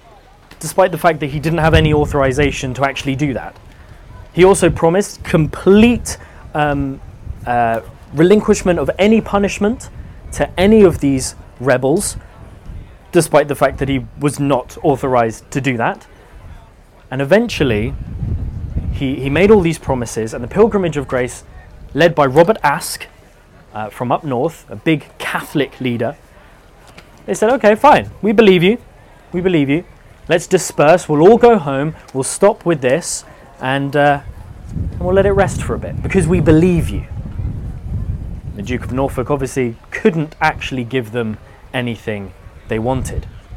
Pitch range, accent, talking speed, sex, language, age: 115-165 Hz, British, 150 wpm, male, English, 20-39